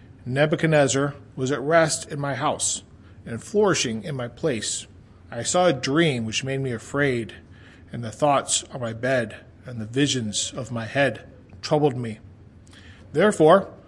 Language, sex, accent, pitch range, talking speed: English, male, American, 110-155 Hz, 150 wpm